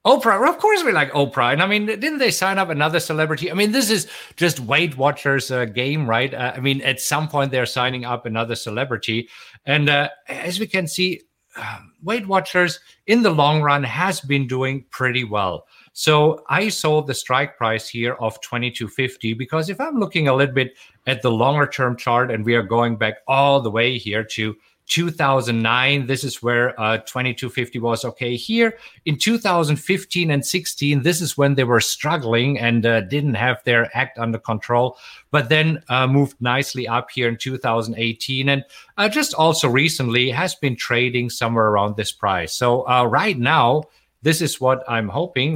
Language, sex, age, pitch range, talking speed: English, male, 50-69, 120-155 Hz, 190 wpm